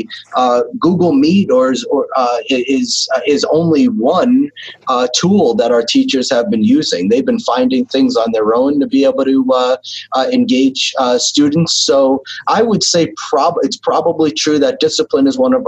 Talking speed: 180 wpm